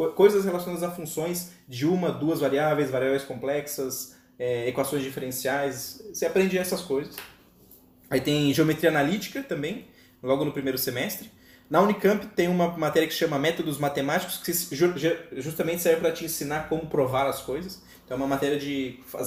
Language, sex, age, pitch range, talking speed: Portuguese, male, 20-39, 130-170 Hz, 155 wpm